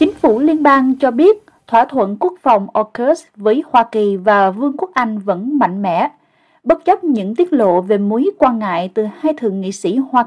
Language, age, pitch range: Vietnamese, 20-39, 195-275 Hz